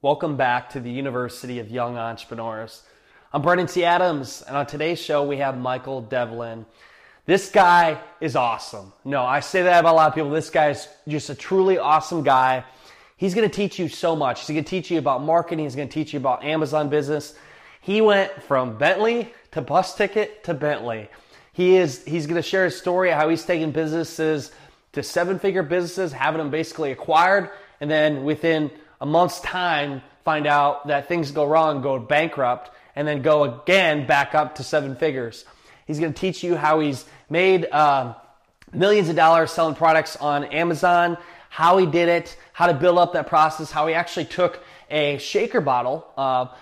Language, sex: English, male